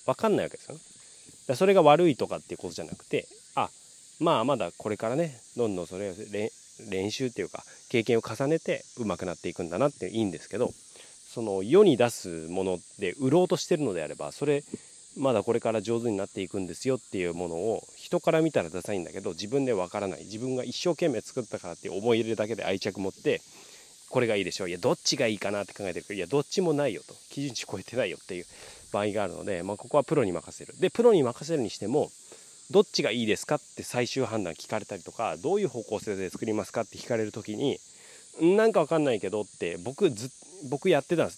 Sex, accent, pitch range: male, native, 105-150 Hz